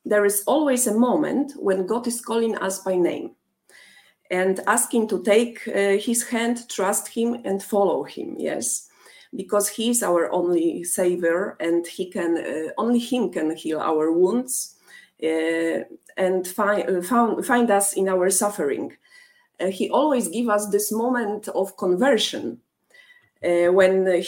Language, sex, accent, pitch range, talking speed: English, female, Polish, 180-235 Hz, 155 wpm